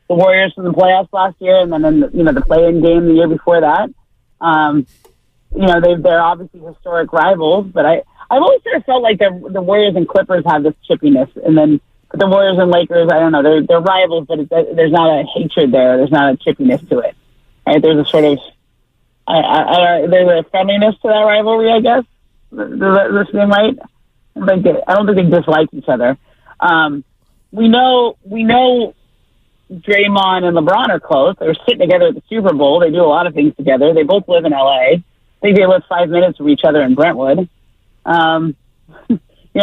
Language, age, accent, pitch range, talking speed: English, 30-49, American, 170-210 Hz, 205 wpm